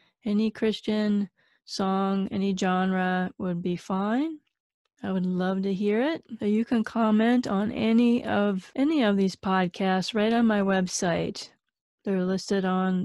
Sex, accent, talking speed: female, American, 140 wpm